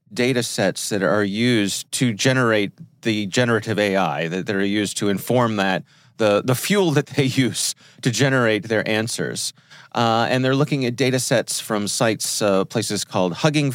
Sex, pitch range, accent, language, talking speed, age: male, 105-145 Hz, American, English, 160 wpm, 30-49